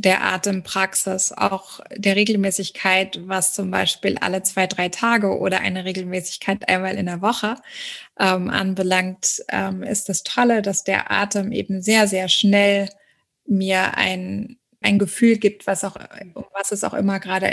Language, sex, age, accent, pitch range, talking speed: German, female, 20-39, German, 190-210 Hz, 145 wpm